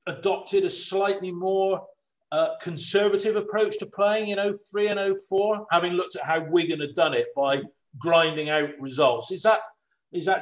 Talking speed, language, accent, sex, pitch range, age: 175 wpm, English, British, male, 135-175 Hz, 40-59